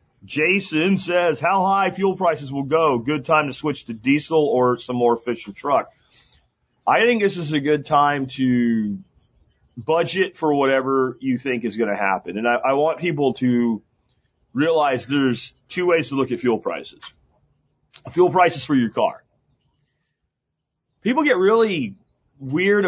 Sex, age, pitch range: male, 40-59, 125-175 Hz